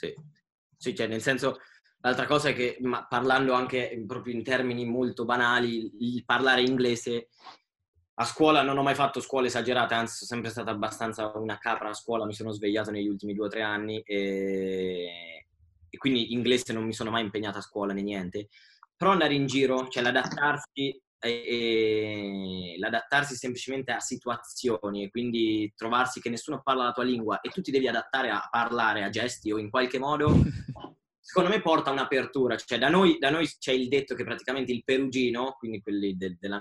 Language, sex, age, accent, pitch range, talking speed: Italian, male, 20-39, native, 110-130 Hz, 185 wpm